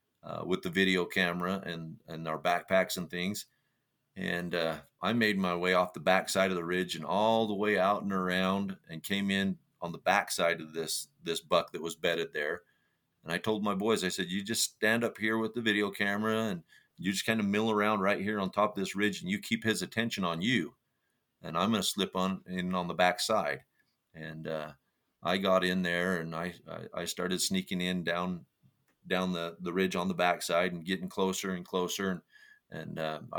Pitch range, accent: 90-105 Hz, American